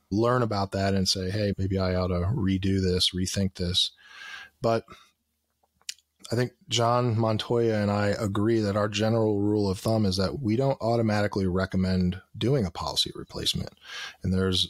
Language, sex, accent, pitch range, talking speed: English, male, American, 95-115 Hz, 165 wpm